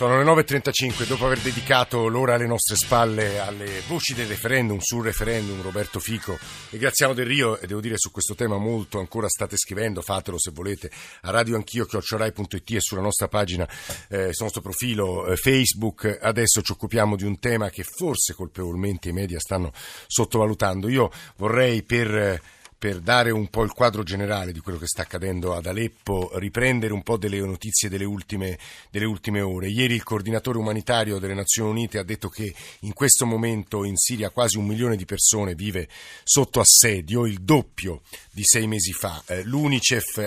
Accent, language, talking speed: native, Italian, 175 wpm